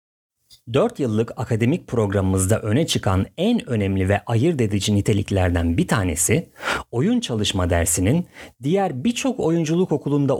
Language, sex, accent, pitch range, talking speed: Turkish, male, native, 100-140 Hz, 120 wpm